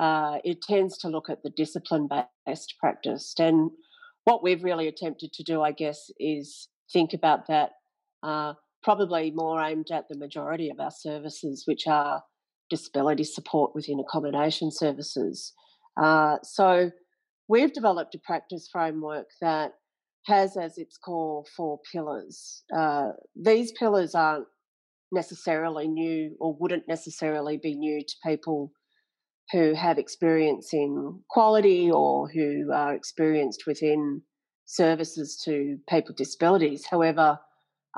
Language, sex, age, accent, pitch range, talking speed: English, female, 40-59, Australian, 150-180 Hz, 130 wpm